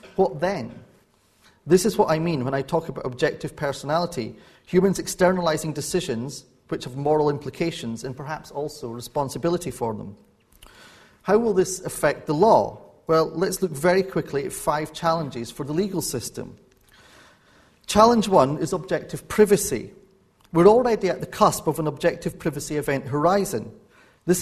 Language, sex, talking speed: English, male, 150 wpm